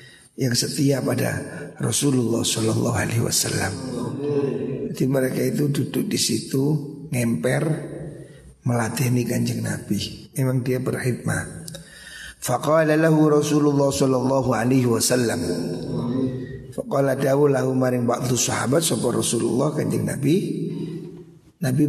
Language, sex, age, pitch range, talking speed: Indonesian, male, 50-69, 125-155 Hz, 100 wpm